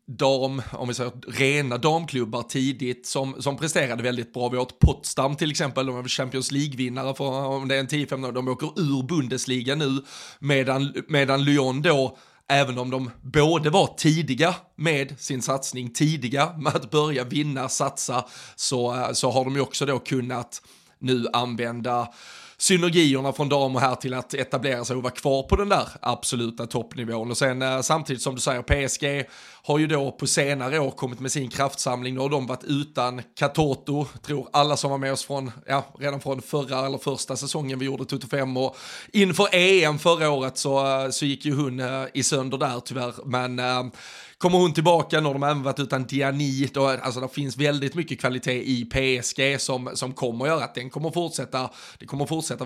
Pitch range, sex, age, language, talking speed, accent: 125-145 Hz, male, 30-49, Swedish, 190 wpm, native